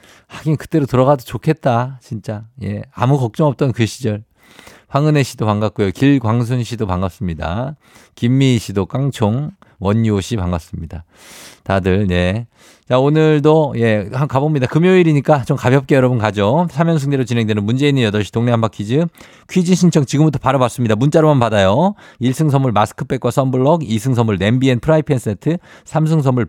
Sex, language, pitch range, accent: male, Korean, 105-150 Hz, native